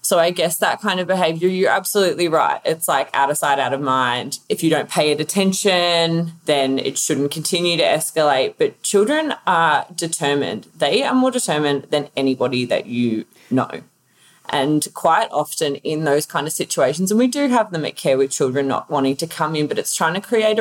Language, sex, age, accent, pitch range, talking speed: English, female, 20-39, Australian, 135-165 Hz, 205 wpm